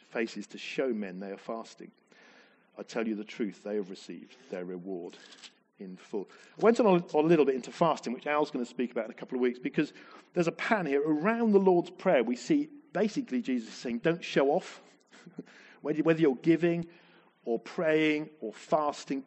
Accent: British